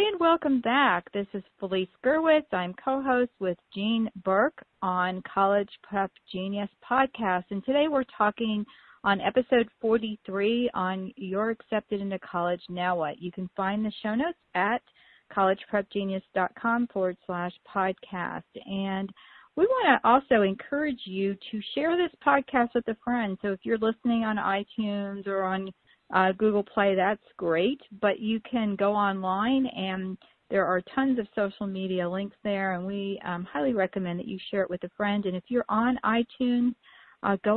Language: English